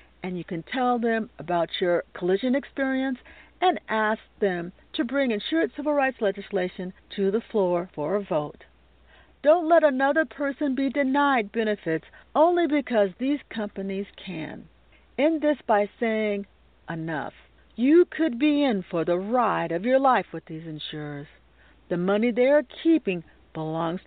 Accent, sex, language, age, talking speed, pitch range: American, female, English, 50-69, 150 wpm, 170-270 Hz